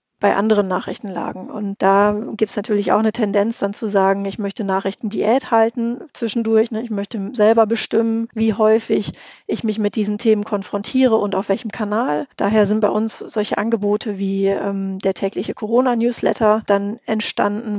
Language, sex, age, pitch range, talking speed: German, female, 40-59, 200-225 Hz, 160 wpm